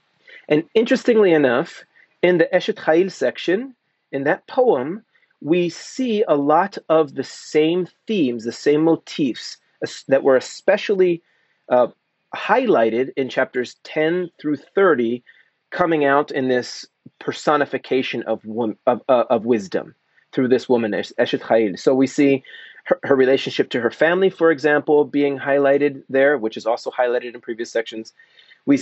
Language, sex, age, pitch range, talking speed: English, male, 30-49, 125-170 Hz, 145 wpm